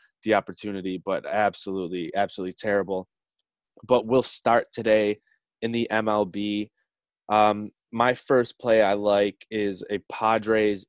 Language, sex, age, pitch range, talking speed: English, male, 20-39, 100-110 Hz, 120 wpm